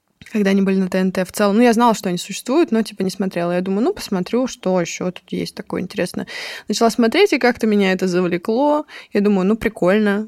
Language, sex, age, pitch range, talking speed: Russian, female, 20-39, 185-225 Hz, 220 wpm